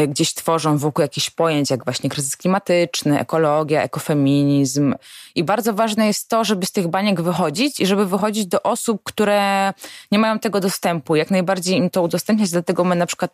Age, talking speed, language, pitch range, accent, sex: 20-39, 180 wpm, Polish, 145-180 Hz, native, female